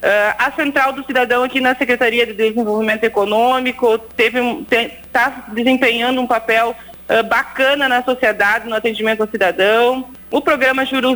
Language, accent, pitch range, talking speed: Portuguese, Brazilian, 225-265 Hz, 130 wpm